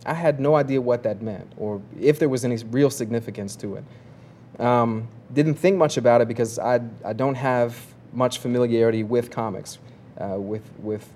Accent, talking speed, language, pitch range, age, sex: American, 185 wpm, English, 115-135 Hz, 30-49, male